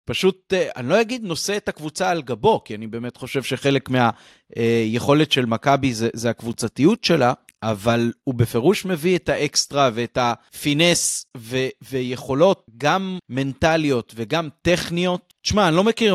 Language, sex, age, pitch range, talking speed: Hebrew, male, 30-49, 120-165 Hz, 145 wpm